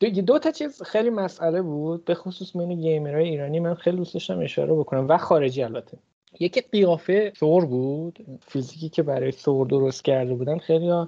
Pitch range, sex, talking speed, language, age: 135-165 Hz, male, 175 wpm, Persian, 20-39